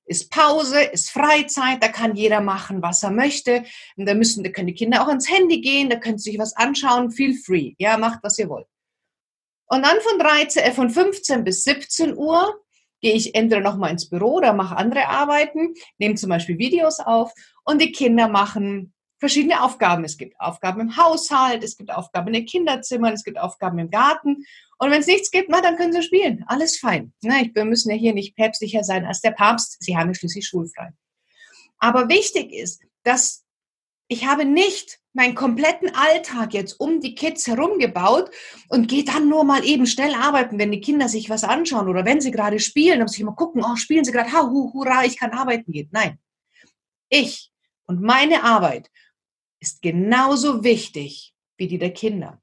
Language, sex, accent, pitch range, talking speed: German, female, German, 210-290 Hz, 195 wpm